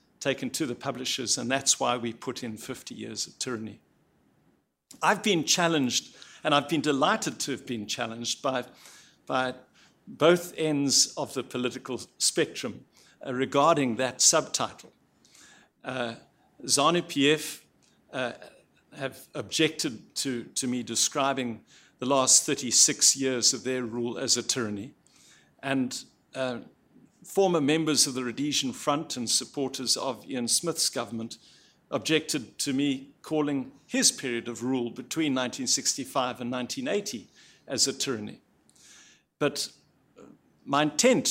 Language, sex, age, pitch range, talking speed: English, male, 60-79, 120-150 Hz, 120 wpm